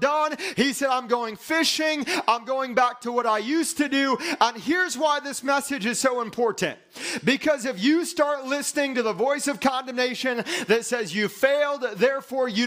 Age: 30-49